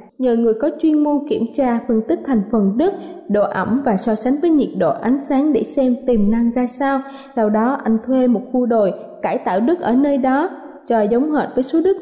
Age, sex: 20-39, female